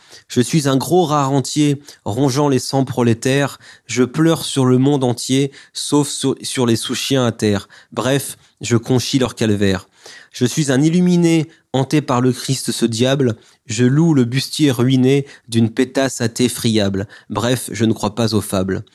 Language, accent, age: French, French, 20-39